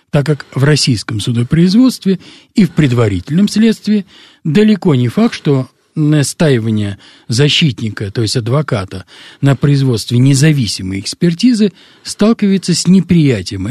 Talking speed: 110 wpm